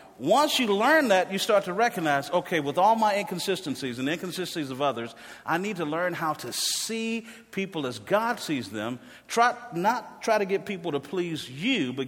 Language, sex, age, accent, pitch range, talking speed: English, male, 40-59, American, 120-190 Hz, 200 wpm